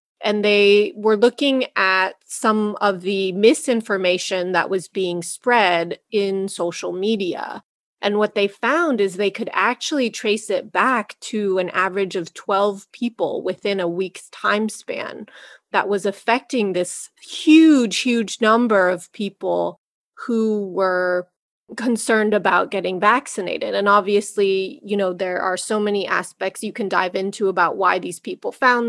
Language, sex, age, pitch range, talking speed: English, female, 30-49, 190-225 Hz, 145 wpm